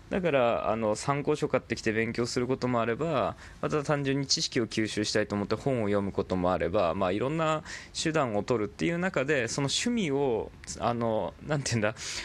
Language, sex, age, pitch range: Japanese, male, 20-39, 100-155 Hz